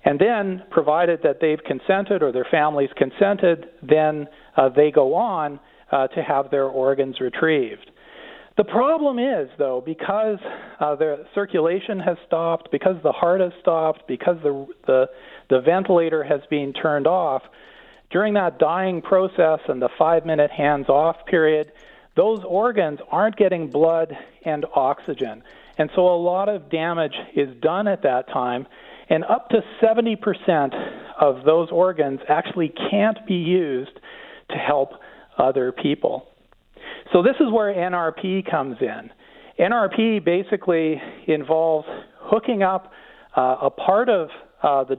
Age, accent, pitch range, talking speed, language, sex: 50-69, American, 150-200 Hz, 140 wpm, English, male